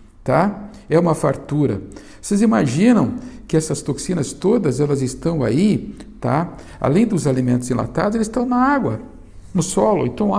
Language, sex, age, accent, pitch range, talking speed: Portuguese, male, 60-79, Brazilian, 125-185 Hz, 150 wpm